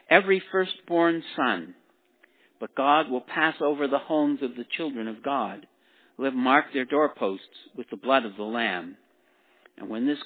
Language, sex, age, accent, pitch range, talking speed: English, male, 60-79, American, 140-220 Hz, 170 wpm